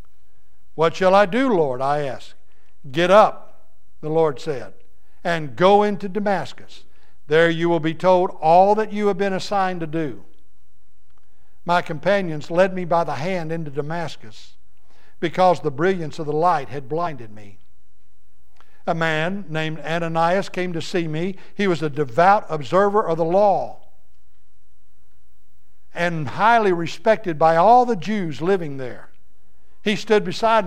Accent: American